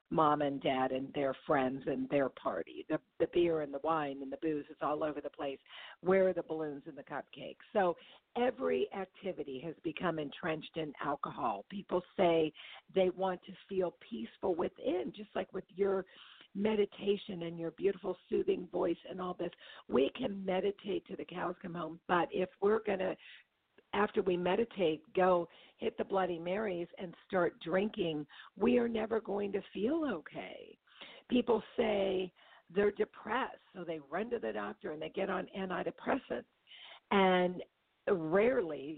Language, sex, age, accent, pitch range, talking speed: English, female, 50-69, American, 160-205 Hz, 165 wpm